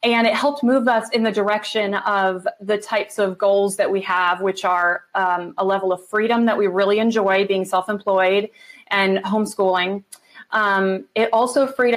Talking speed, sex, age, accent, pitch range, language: 175 wpm, female, 30-49, American, 195-245 Hz, English